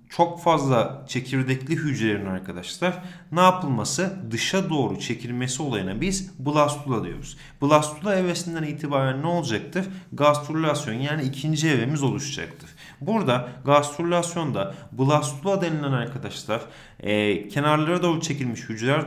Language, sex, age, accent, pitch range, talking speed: Turkish, male, 30-49, native, 130-170 Hz, 105 wpm